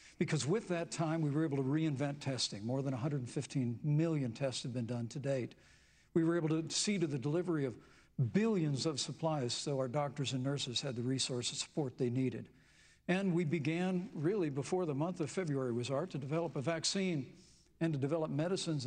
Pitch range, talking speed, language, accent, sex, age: 135-170 Hz, 200 wpm, English, American, male, 60-79